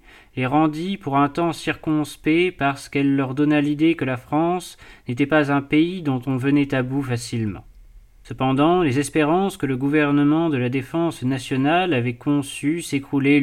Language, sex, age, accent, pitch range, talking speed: French, male, 30-49, French, 130-155 Hz, 165 wpm